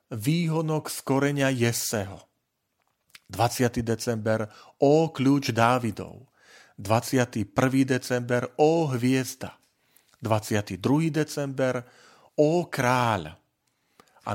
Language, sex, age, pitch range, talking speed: Slovak, male, 40-59, 110-135 Hz, 75 wpm